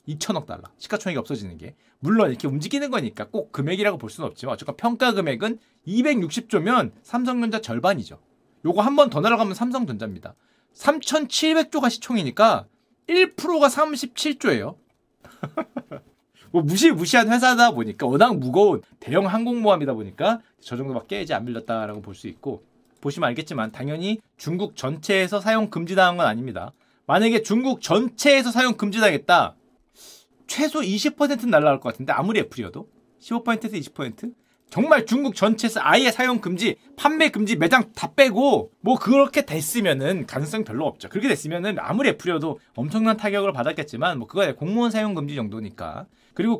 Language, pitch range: Korean, 175-255 Hz